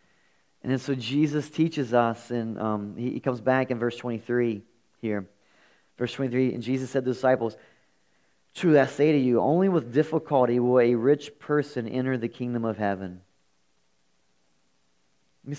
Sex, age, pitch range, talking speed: male, 30-49, 95-130 Hz, 160 wpm